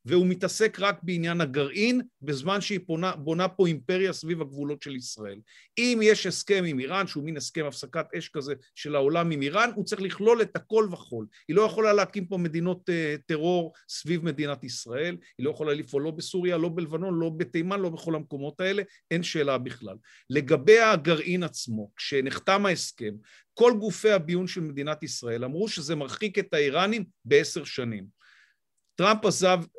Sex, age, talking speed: male, 50-69, 165 wpm